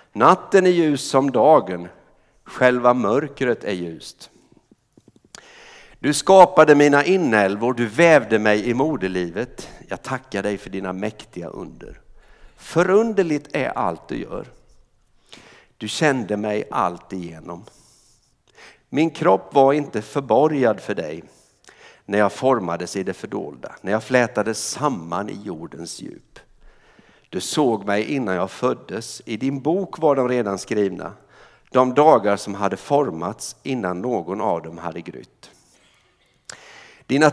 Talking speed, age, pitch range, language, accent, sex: 130 wpm, 60-79, 100-145 Hz, Swedish, native, male